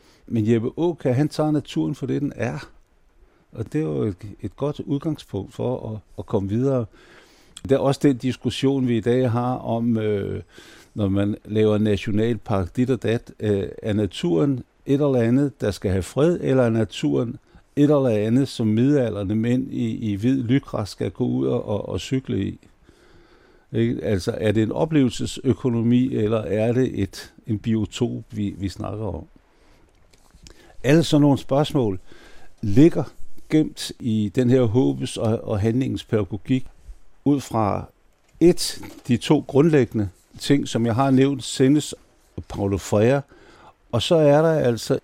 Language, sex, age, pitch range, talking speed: Danish, male, 60-79, 105-135 Hz, 160 wpm